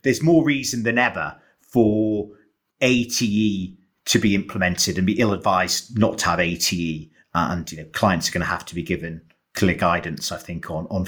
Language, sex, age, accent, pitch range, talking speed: English, male, 40-59, British, 105-135 Hz, 185 wpm